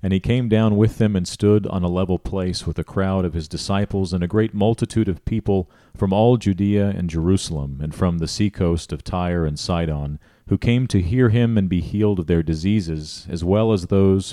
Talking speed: 220 wpm